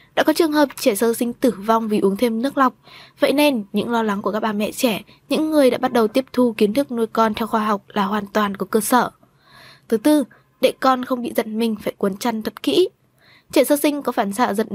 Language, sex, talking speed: Vietnamese, female, 260 wpm